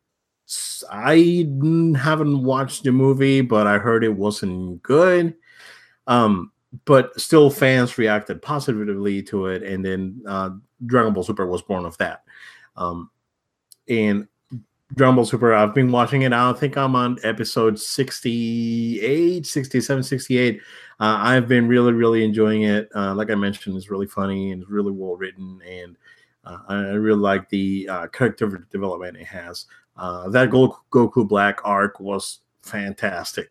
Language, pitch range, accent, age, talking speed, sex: English, 100-130 Hz, American, 30-49, 150 wpm, male